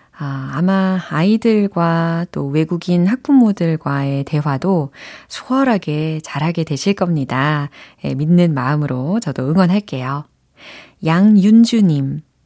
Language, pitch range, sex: Korean, 150-210 Hz, female